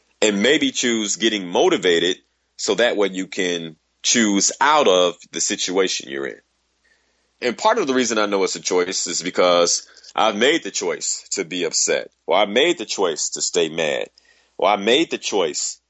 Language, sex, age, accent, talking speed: English, male, 30-49, American, 185 wpm